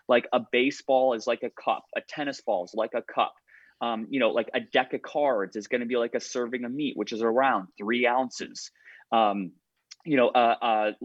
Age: 20-39